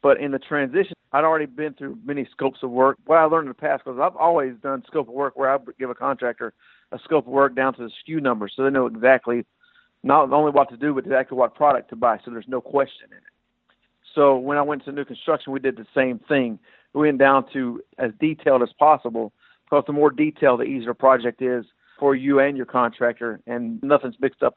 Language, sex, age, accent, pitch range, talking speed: English, male, 50-69, American, 125-145 Hz, 240 wpm